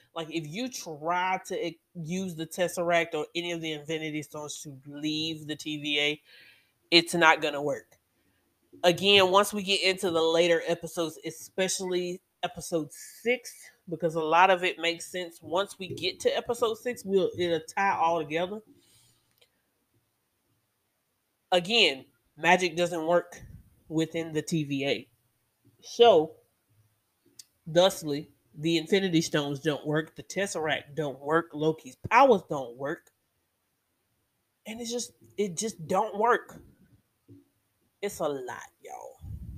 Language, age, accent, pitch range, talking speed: English, 30-49, American, 150-180 Hz, 125 wpm